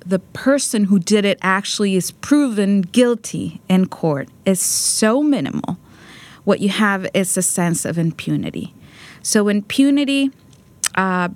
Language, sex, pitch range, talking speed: English, female, 175-215 Hz, 130 wpm